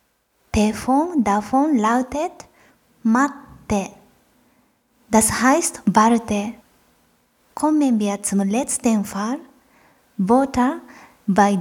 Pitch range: 205-270 Hz